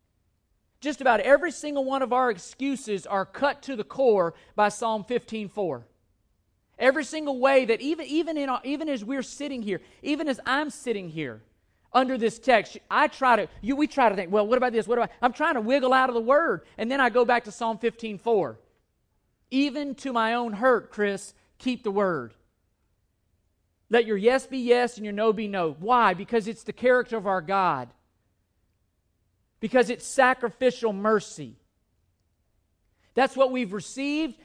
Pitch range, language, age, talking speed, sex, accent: 190-260 Hz, English, 40-59, 180 wpm, male, American